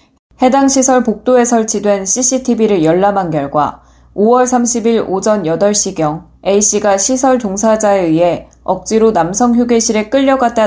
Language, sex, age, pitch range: Korean, female, 10-29, 185-245 Hz